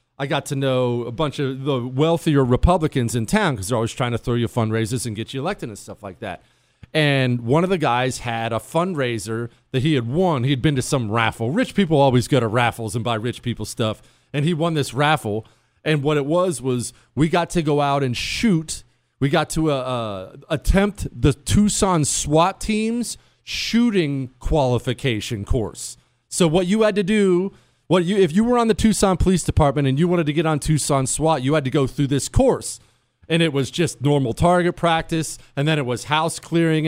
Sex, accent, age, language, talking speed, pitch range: male, American, 40-59, English, 215 wpm, 125-170 Hz